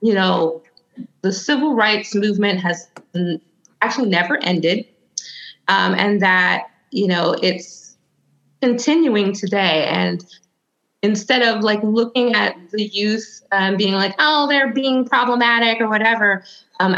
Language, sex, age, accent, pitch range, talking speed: English, female, 20-39, American, 180-215 Hz, 125 wpm